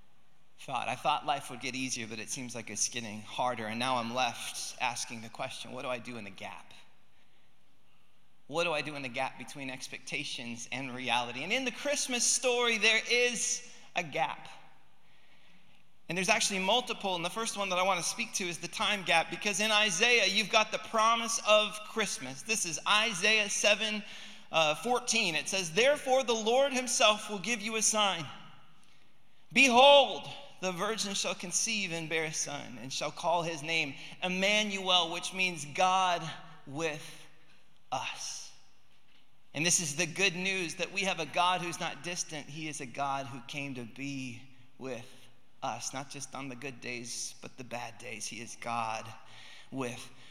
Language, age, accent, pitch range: English, 30-49, American, 130-210 Hz